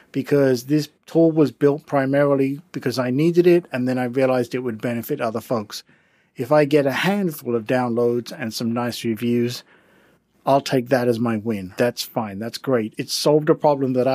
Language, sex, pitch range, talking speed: English, male, 120-145 Hz, 190 wpm